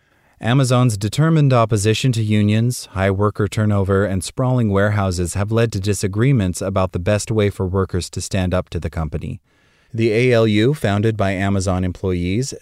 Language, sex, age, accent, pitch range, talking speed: English, male, 30-49, American, 90-115 Hz, 155 wpm